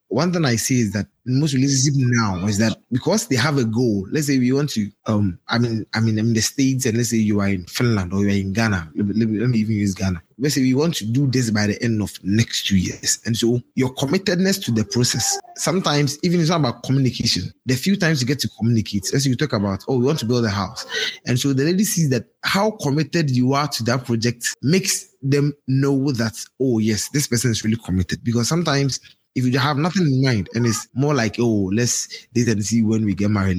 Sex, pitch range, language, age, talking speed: male, 110-140 Hz, English, 20-39, 245 wpm